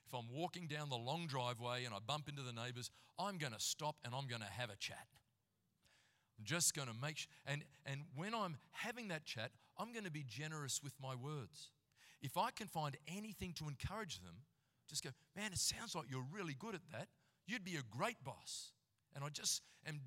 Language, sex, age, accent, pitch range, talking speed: English, male, 40-59, Australian, 130-165 Hz, 220 wpm